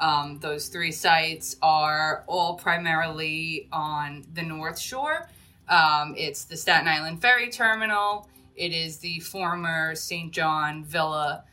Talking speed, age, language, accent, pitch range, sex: 130 wpm, 20-39, English, American, 155-185 Hz, female